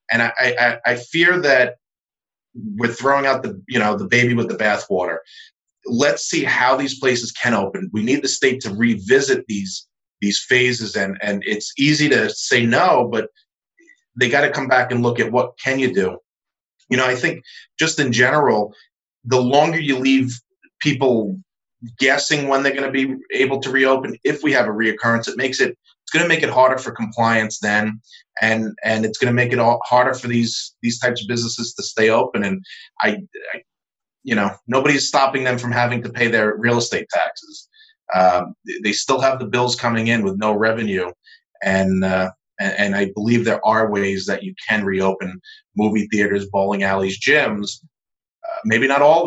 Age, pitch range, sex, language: 30-49, 110-140 Hz, male, English